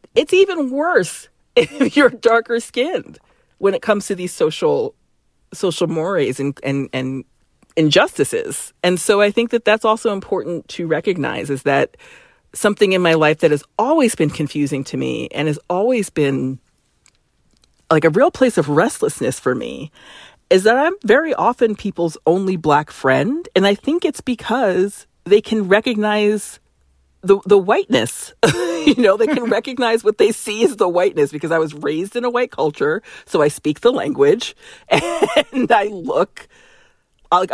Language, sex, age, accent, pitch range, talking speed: English, female, 40-59, American, 160-260 Hz, 165 wpm